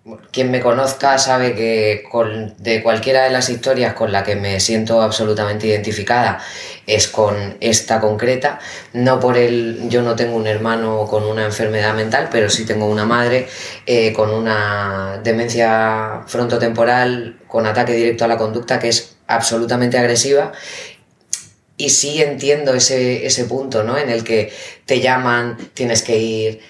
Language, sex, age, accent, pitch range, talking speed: Spanish, female, 20-39, Spanish, 110-130 Hz, 155 wpm